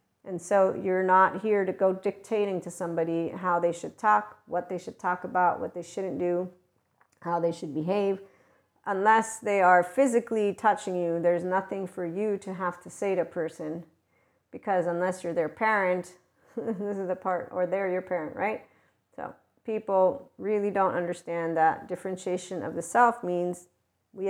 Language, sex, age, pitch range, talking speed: English, female, 40-59, 175-205 Hz, 175 wpm